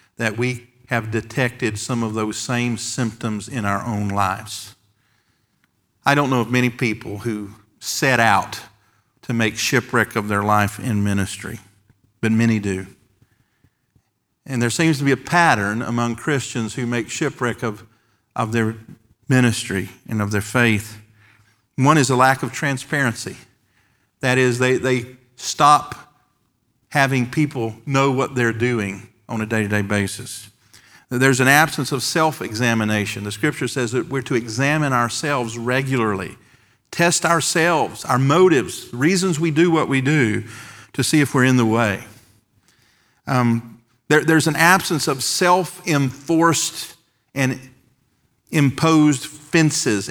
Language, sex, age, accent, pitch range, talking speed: English, male, 50-69, American, 110-140 Hz, 135 wpm